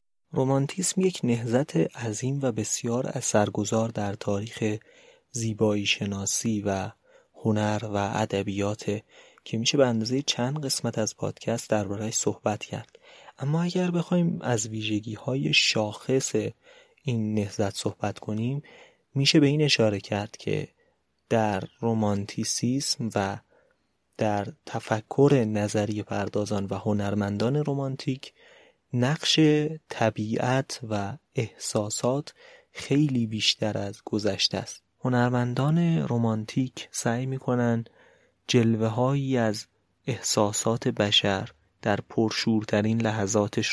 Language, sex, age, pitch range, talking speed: Persian, male, 30-49, 105-130 Hz, 100 wpm